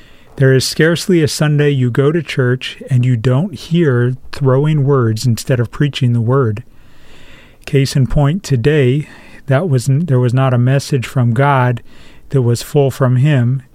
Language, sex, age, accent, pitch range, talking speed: English, male, 40-59, American, 120-145 Hz, 165 wpm